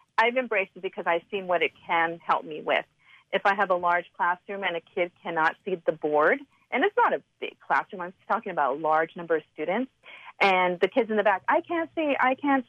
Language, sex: English, female